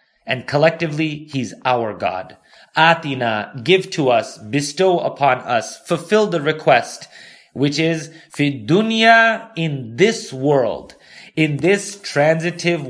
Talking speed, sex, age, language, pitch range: 110 wpm, male, 30-49, English, 135-175 Hz